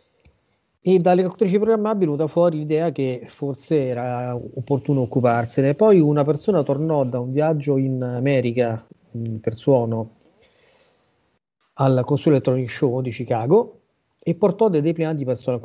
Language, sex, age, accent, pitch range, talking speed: Italian, male, 40-59, native, 125-160 Hz, 140 wpm